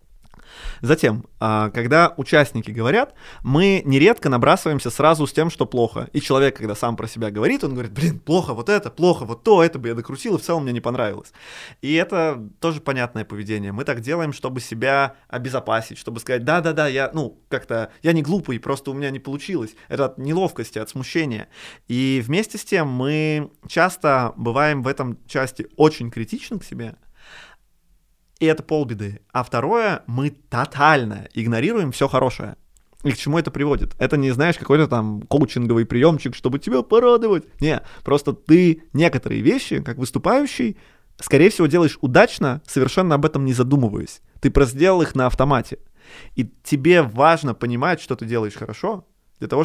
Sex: male